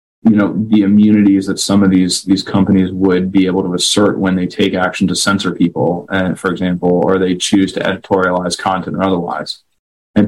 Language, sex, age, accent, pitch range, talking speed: English, male, 20-39, American, 95-100 Hz, 200 wpm